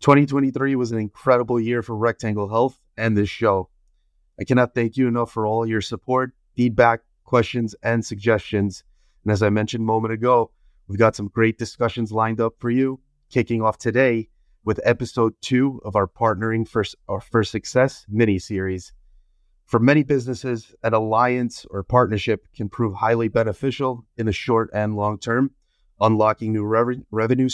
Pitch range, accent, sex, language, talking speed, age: 105-125 Hz, American, male, English, 160 wpm, 30-49